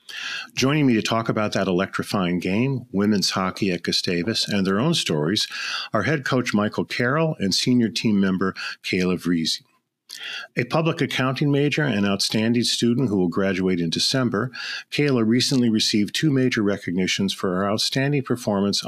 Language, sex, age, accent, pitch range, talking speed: English, male, 50-69, American, 90-120 Hz, 155 wpm